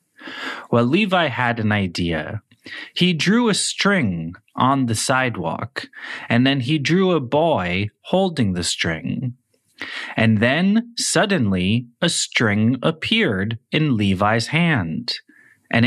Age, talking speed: 30-49, 115 wpm